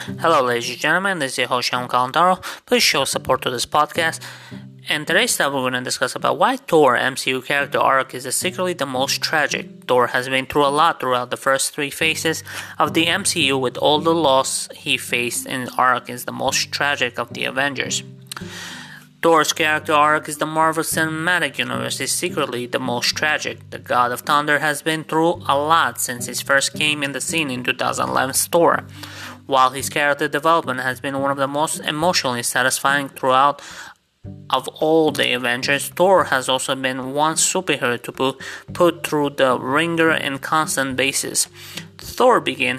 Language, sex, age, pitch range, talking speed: English, male, 20-39, 130-160 Hz, 180 wpm